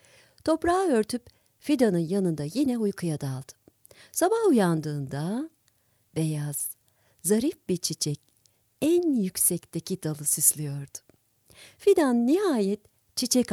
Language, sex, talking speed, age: Turkish, female, 90 wpm, 50-69